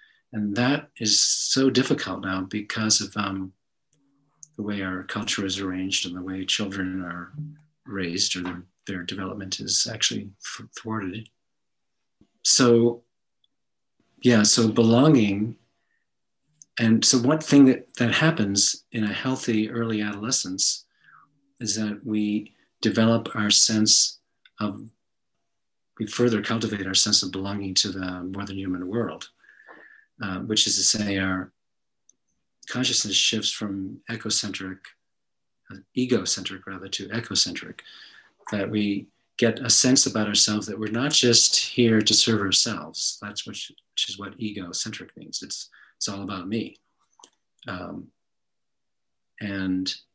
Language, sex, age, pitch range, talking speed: English, male, 50-69, 95-115 Hz, 130 wpm